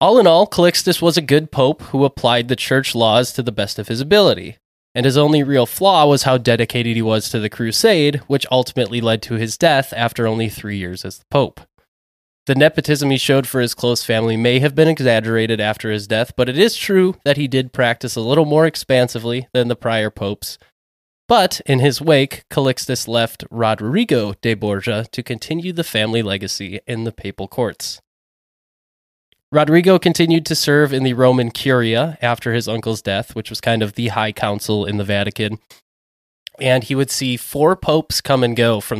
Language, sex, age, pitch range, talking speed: English, male, 20-39, 110-140 Hz, 195 wpm